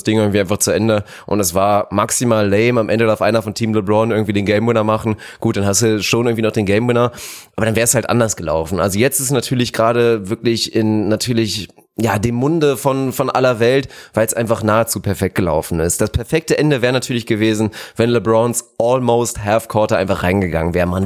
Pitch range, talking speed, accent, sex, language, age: 110-135 Hz, 210 wpm, German, male, German, 30-49